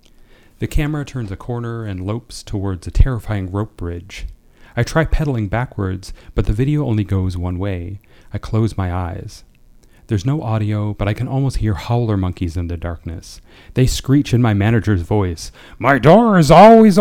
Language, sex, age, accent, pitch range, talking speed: English, male, 40-59, American, 95-120 Hz, 175 wpm